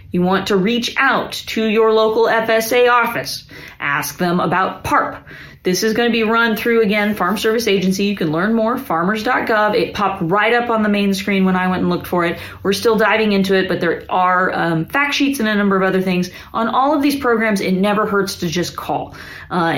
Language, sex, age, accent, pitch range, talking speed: English, female, 30-49, American, 170-220 Hz, 225 wpm